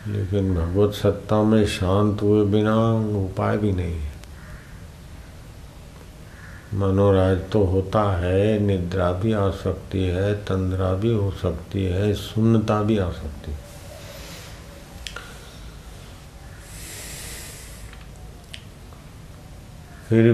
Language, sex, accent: Hindi, male, native